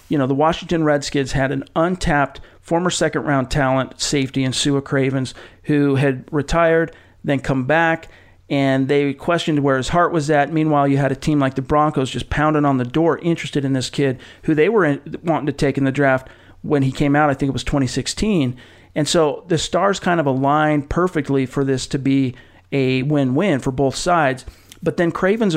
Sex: male